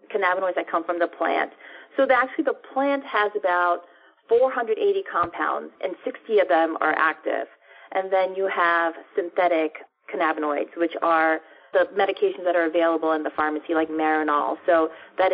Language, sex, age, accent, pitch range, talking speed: English, female, 30-49, American, 160-190 Hz, 165 wpm